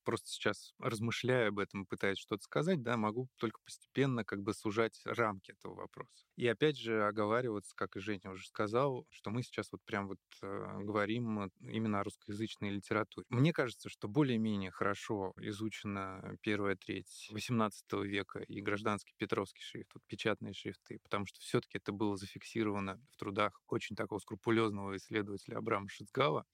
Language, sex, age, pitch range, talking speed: Russian, male, 20-39, 100-115 Hz, 160 wpm